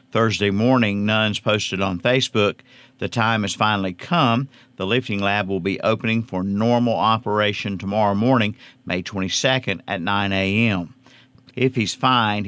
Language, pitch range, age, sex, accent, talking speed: English, 100-125 Hz, 50-69, male, American, 145 wpm